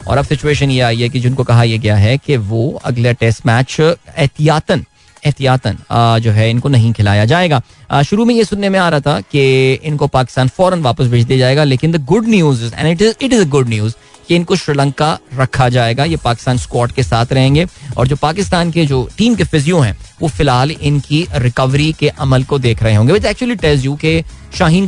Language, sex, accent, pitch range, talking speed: Hindi, male, native, 125-165 Hz, 190 wpm